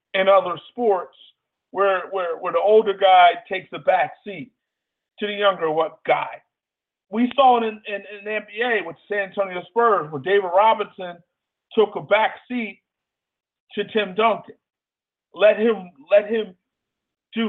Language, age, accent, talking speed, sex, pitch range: English, 40-59, American, 155 wpm, male, 205-260 Hz